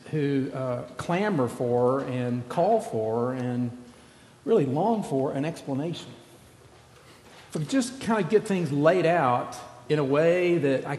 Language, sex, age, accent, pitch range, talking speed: English, male, 50-69, American, 130-170 Hz, 140 wpm